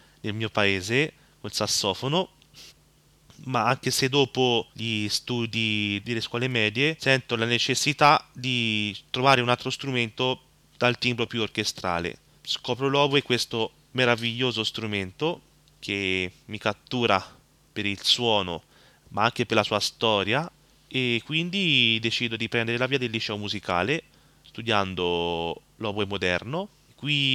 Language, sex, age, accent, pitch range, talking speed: Italian, male, 20-39, native, 100-125 Hz, 125 wpm